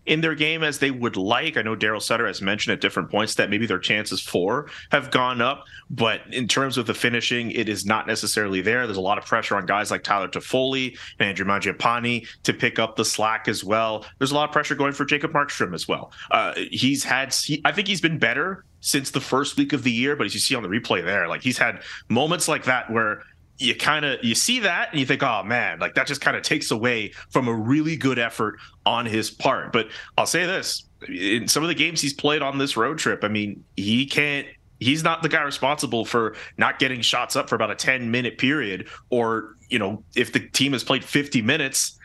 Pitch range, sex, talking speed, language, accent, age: 110-145 Hz, male, 240 wpm, English, American, 30-49